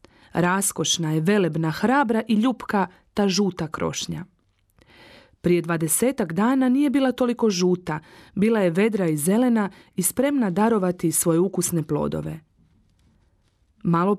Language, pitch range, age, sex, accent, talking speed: Croatian, 165-225 Hz, 30-49, female, native, 120 wpm